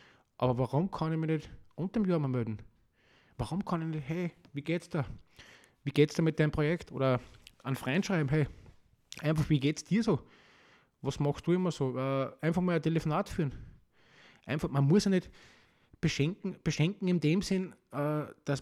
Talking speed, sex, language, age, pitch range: 175 wpm, male, German, 20-39, 125-160 Hz